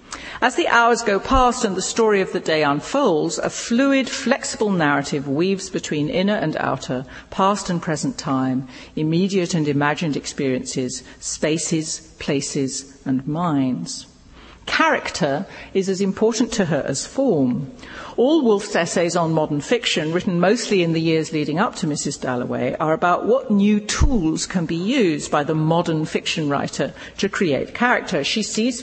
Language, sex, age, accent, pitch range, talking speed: English, female, 50-69, British, 155-220 Hz, 155 wpm